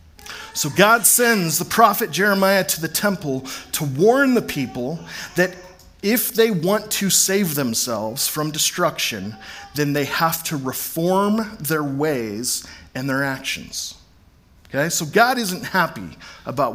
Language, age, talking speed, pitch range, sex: English, 40-59, 135 wpm, 110-185 Hz, male